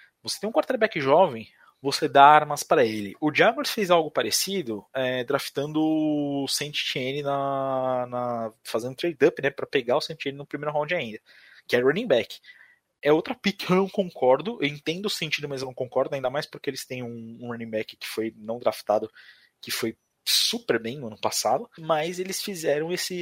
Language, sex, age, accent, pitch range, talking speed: Portuguese, male, 20-39, Brazilian, 115-165 Hz, 195 wpm